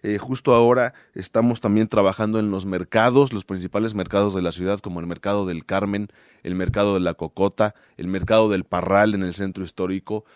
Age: 30-49